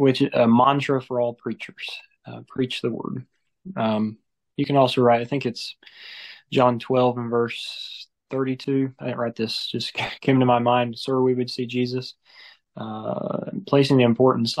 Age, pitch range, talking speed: 20-39, 120-130 Hz, 175 wpm